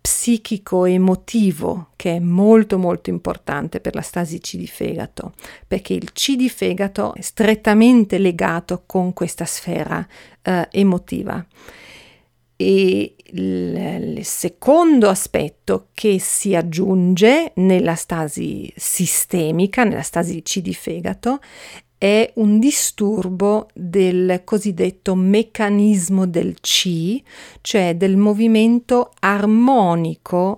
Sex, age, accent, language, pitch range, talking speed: female, 40-59, native, Italian, 180-235 Hz, 105 wpm